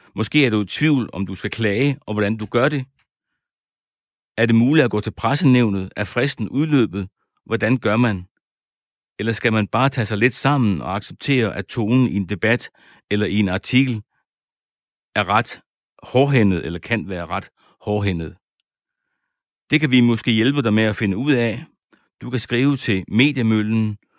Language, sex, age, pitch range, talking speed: Danish, male, 60-79, 105-130 Hz, 175 wpm